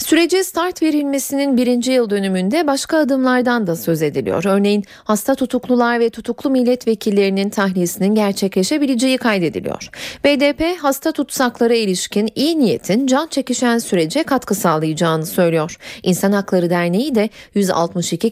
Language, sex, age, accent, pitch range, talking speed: Turkish, female, 40-59, native, 195-270 Hz, 120 wpm